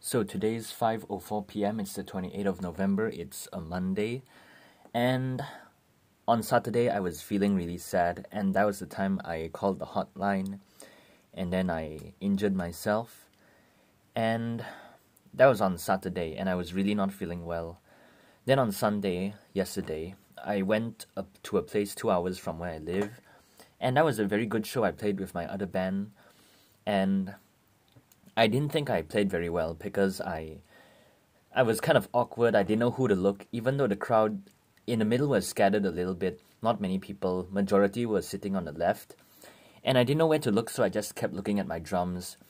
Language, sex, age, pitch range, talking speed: English, male, 20-39, 95-110 Hz, 185 wpm